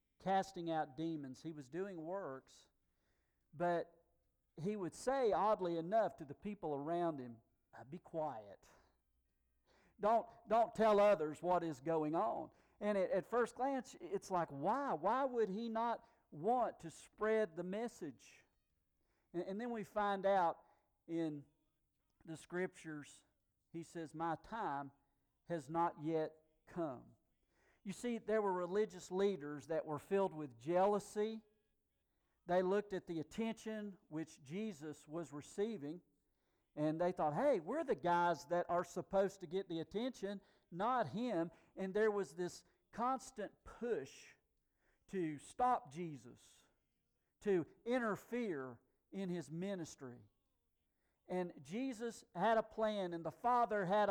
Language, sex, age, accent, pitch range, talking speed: English, male, 50-69, American, 155-210 Hz, 135 wpm